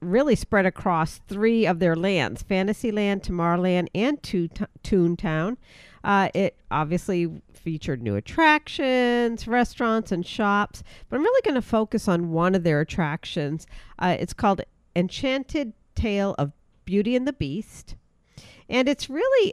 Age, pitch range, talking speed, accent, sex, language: 50-69, 160-220 Hz, 135 wpm, American, female, English